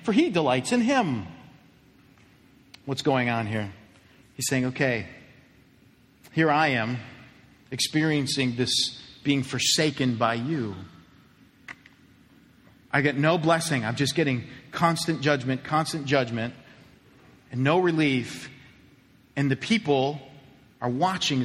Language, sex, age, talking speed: English, male, 40-59, 110 wpm